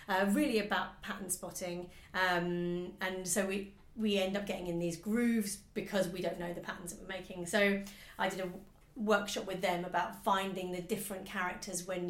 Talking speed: 190 wpm